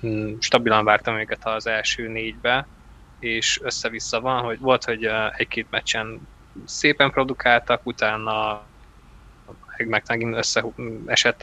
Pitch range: 110-125 Hz